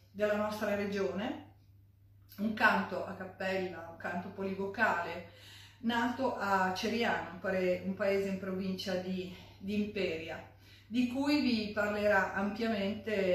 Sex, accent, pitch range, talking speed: female, native, 175-220 Hz, 110 wpm